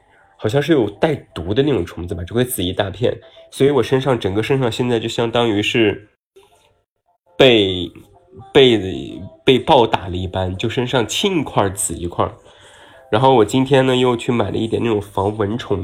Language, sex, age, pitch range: Chinese, male, 20-39, 100-130 Hz